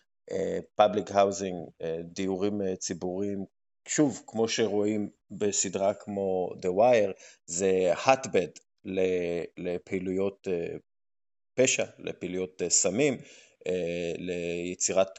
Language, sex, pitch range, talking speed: Hebrew, male, 95-145 Hz, 65 wpm